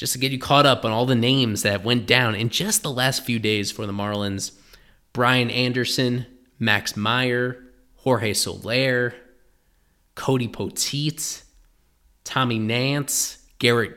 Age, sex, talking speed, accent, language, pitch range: 20-39, male, 140 wpm, American, English, 110-130 Hz